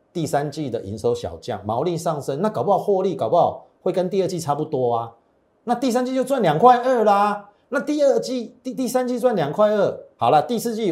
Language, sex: Chinese, male